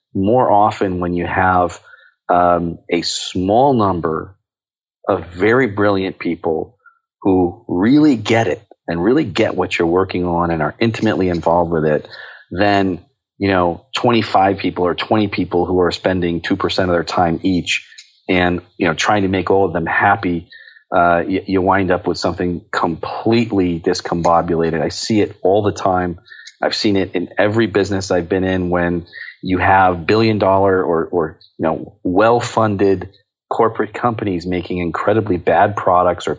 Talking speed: 160 wpm